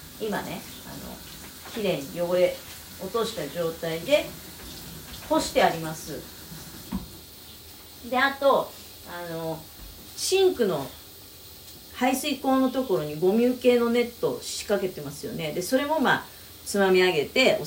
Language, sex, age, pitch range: Japanese, female, 40-59, 150-235 Hz